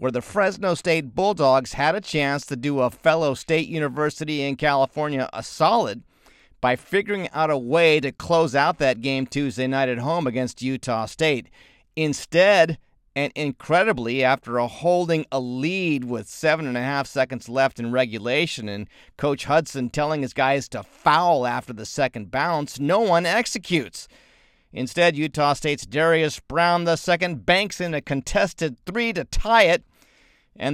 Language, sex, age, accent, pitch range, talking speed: English, male, 40-59, American, 125-160 Hz, 160 wpm